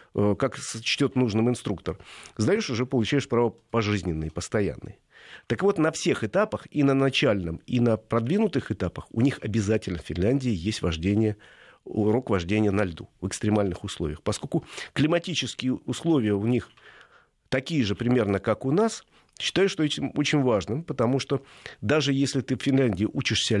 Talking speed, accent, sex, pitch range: 155 wpm, native, male, 105-135 Hz